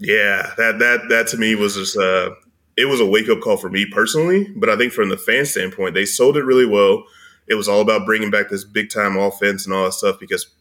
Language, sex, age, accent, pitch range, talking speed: English, male, 20-39, American, 95-120 Hz, 245 wpm